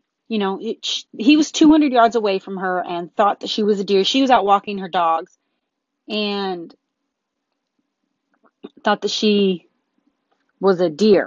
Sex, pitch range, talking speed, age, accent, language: female, 200-270 Hz, 165 wpm, 30-49, American, English